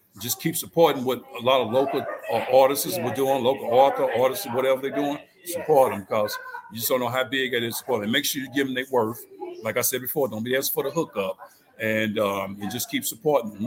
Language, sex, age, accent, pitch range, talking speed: English, male, 50-69, American, 110-150 Hz, 240 wpm